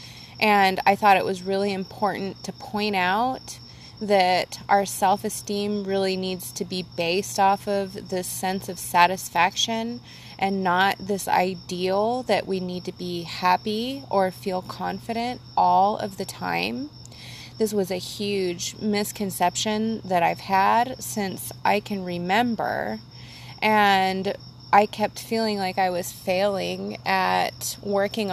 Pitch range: 180-210 Hz